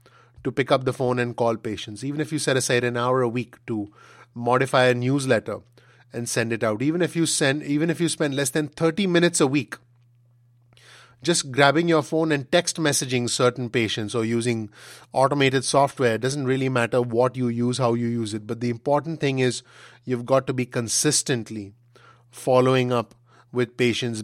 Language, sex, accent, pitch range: English, male, Indian, 120-140 Hz